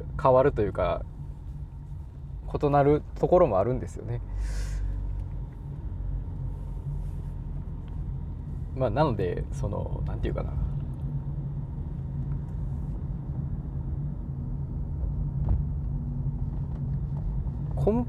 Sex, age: male, 20-39